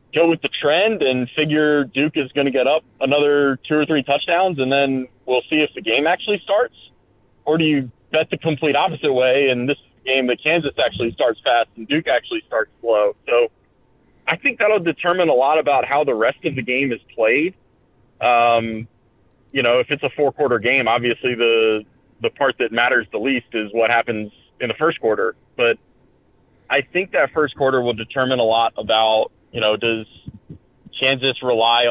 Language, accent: English, American